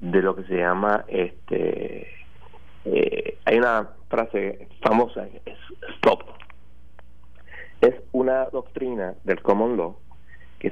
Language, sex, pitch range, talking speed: Spanish, male, 85-125 Hz, 105 wpm